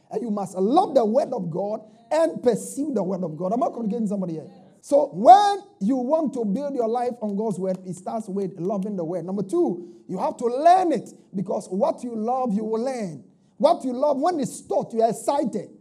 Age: 50-69